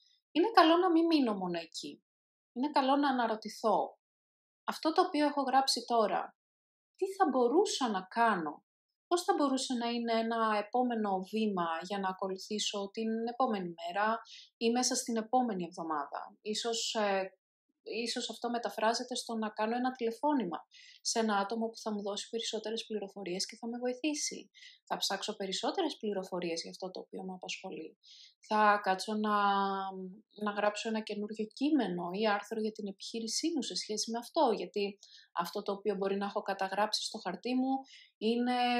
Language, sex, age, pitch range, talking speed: Greek, female, 20-39, 205-255 Hz, 160 wpm